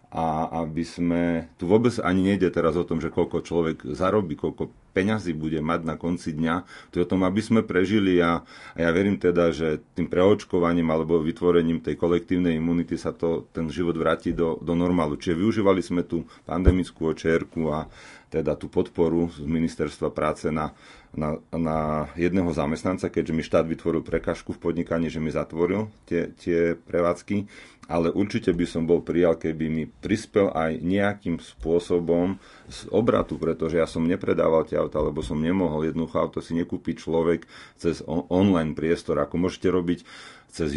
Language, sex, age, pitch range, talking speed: Slovak, male, 40-59, 80-90 Hz, 170 wpm